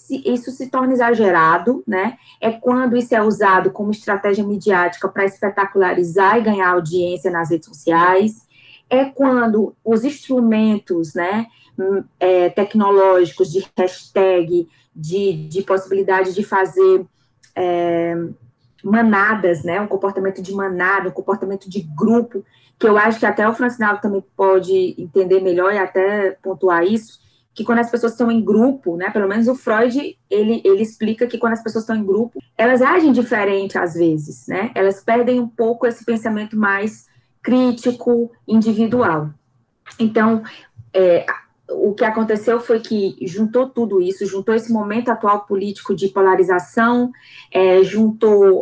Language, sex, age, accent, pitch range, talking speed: Portuguese, female, 20-39, Brazilian, 190-230 Hz, 140 wpm